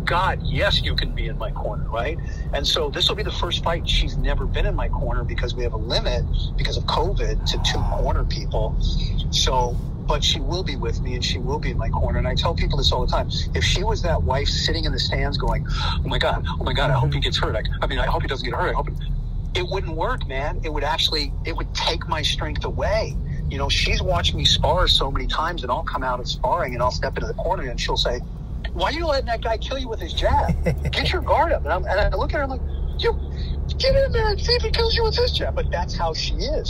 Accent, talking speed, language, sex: American, 275 wpm, English, male